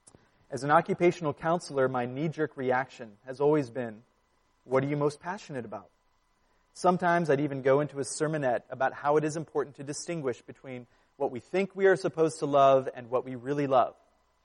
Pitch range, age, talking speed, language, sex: 125-165 Hz, 30-49, 185 wpm, English, male